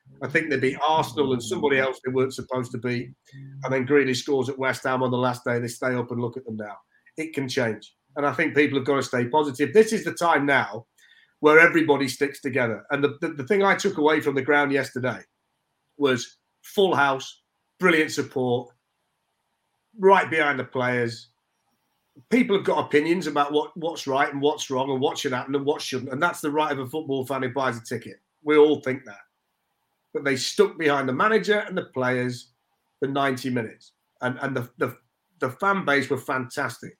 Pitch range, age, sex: 130-155 Hz, 40-59, male